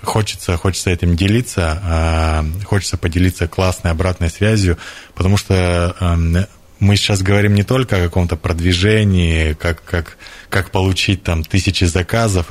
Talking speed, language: 125 wpm, Russian